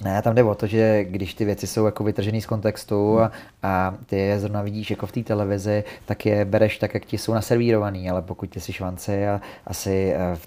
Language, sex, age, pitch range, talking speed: Czech, male, 30-49, 95-105 Hz, 230 wpm